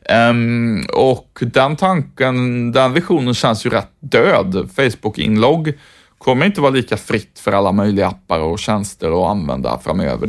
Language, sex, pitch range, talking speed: Swedish, male, 110-125 Hz, 145 wpm